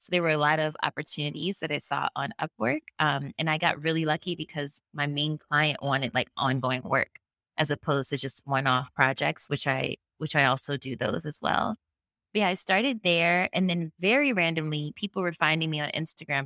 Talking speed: 205 wpm